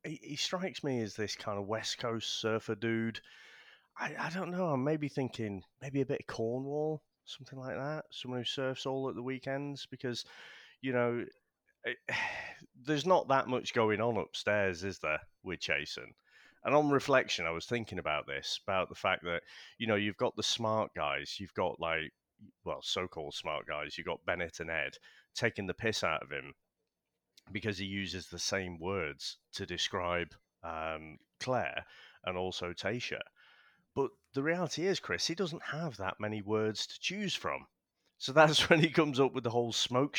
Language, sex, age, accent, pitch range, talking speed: English, male, 30-49, British, 95-135 Hz, 180 wpm